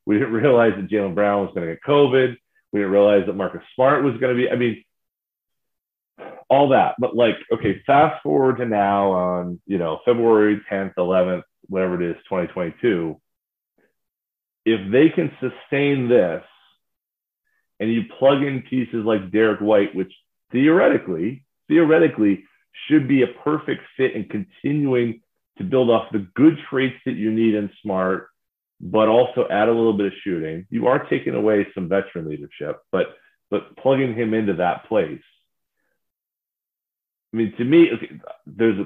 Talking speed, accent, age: 160 wpm, American, 40-59